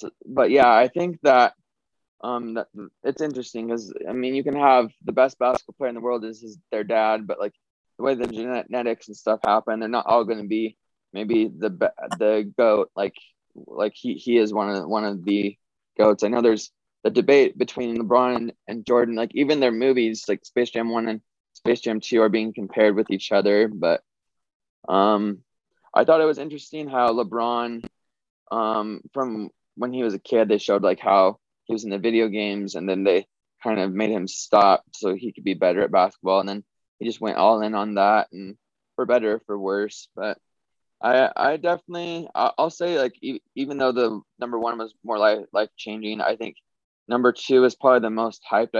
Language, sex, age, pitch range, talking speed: English, male, 20-39, 105-125 Hz, 205 wpm